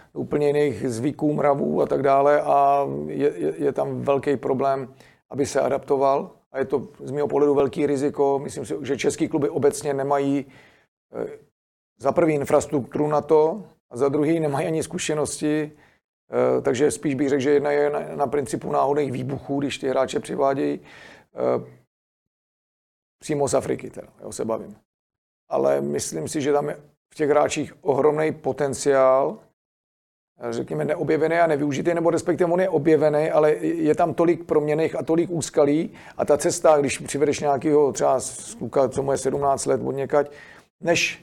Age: 40-59